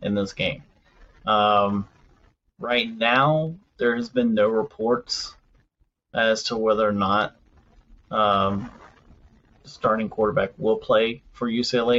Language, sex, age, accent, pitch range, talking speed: English, male, 30-49, American, 105-130 Hz, 115 wpm